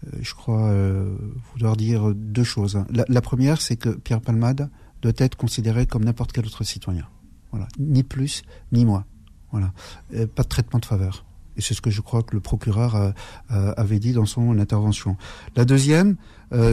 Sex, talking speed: male, 190 wpm